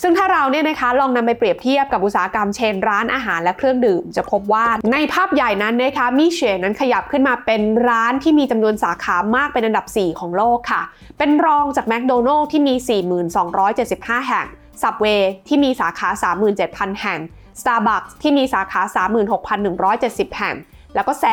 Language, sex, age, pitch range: Thai, female, 20-39, 195-260 Hz